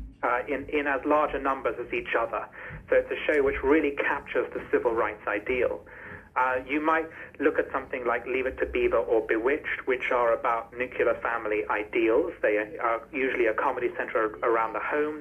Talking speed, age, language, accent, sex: 195 wpm, 30-49, English, British, male